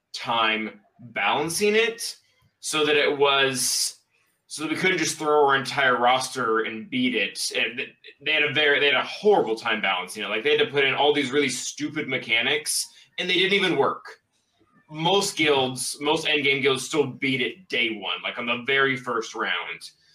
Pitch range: 125-155 Hz